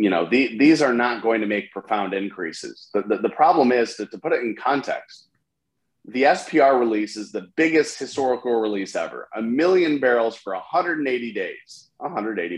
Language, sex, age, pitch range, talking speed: English, male, 30-49, 105-125 Hz, 175 wpm